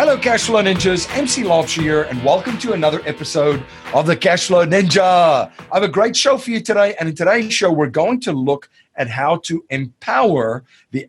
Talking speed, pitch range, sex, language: 195 wpm, 135-180 Hz, male, English